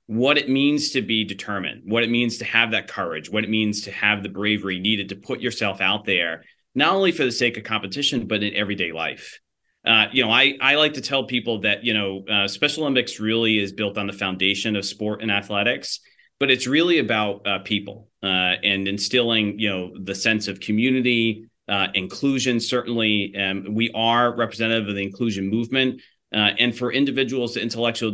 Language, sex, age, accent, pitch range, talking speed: English, male, 30-49, American, 100-120 Hz, 200 wpm